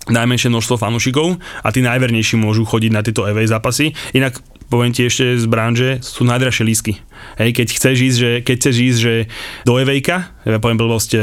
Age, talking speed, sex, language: 30-49, 165 wpm, male, Slovak